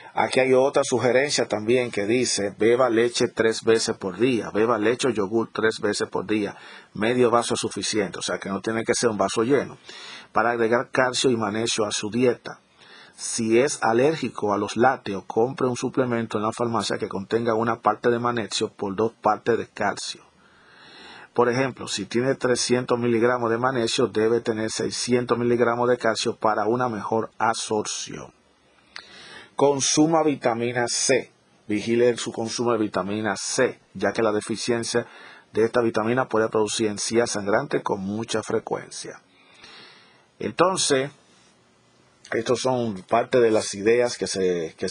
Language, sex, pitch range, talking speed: Spanish, male, 105-125 Hz, 155 wpm